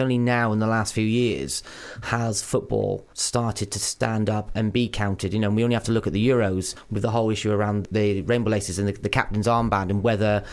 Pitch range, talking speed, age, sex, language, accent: 100-120 Hz, 235 wpm, 30-49, male, English, British